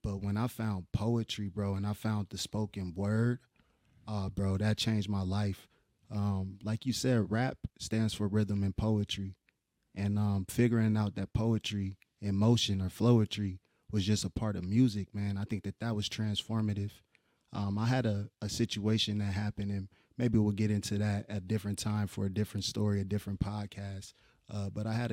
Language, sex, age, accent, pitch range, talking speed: English, male, 30-49, American, 100-110 Hz, 190 wpm